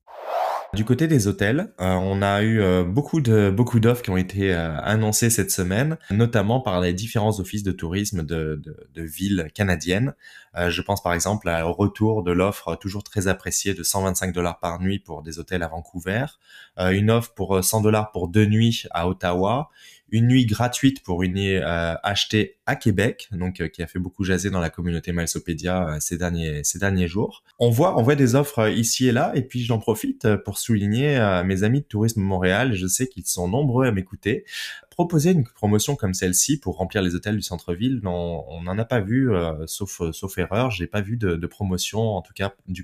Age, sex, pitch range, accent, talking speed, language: 20-39, male, 90-115 Hz, French, 215 wpm, French